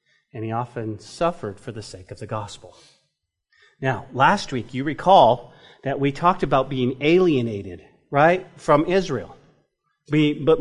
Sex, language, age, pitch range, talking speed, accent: male, English, 40-59, 140-190 Hz, 140 wpm, American